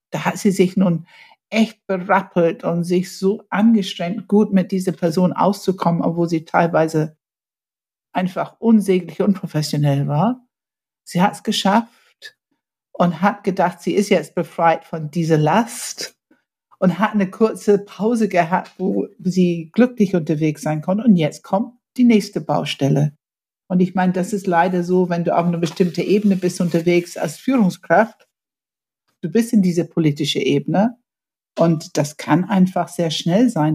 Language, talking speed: German, 150 wpm